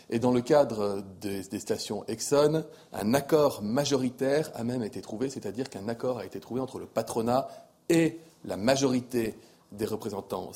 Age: 30-49